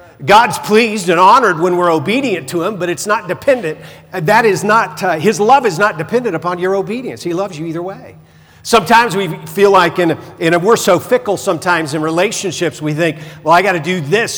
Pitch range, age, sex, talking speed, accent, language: 160-225 Hz, 50-69, male, 205 wpm, American, English